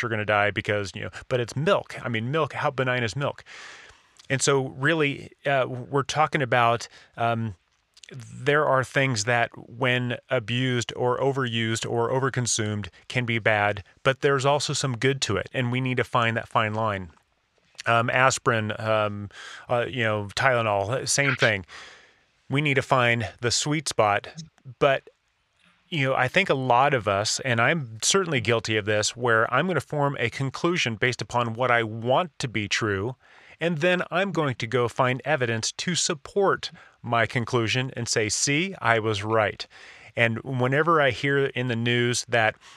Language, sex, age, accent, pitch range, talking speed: English, male, 30-49, American, 115-140 Hz, 175 wpm